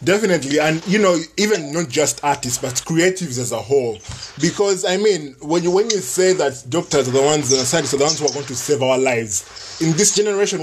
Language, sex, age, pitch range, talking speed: English, male, 20-39, 130-160 Hz, 225 wpm